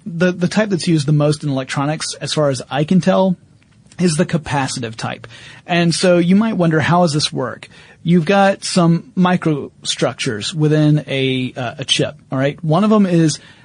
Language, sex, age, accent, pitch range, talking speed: English, male, 30-49, American, 140-175 Hz, 190 wpm